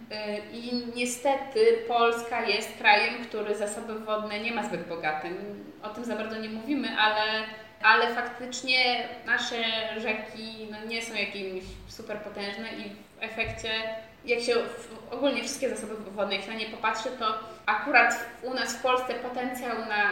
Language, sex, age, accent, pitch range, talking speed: Polish, female, 20-39, native, 195-235 Hz, 150 wpm